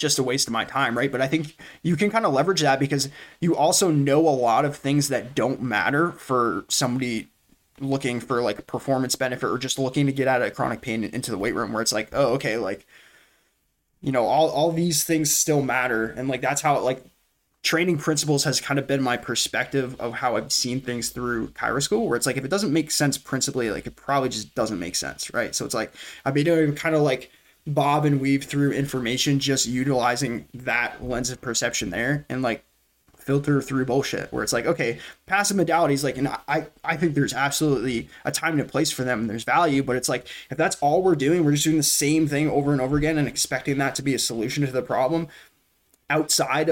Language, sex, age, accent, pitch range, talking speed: English, male, 20-39, American, 125-150 Hz, 230 wpm